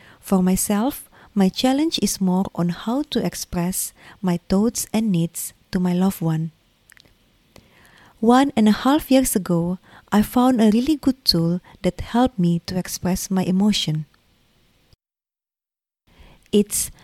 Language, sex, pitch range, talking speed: English, female, 180-235 Hz, 135 wpm